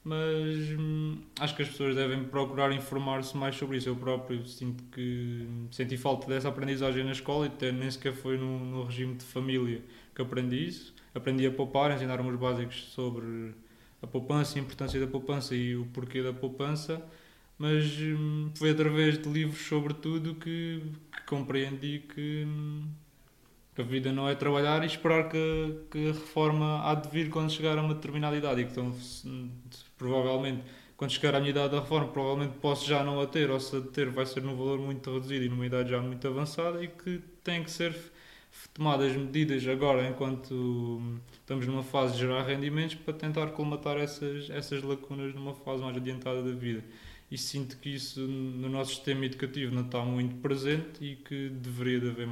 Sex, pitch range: male, 130-150 Hz